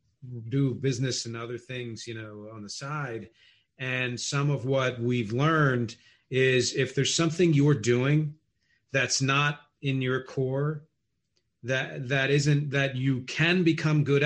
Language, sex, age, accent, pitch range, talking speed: English, male, 40-59, American, 120-150 Hz, 145 wpm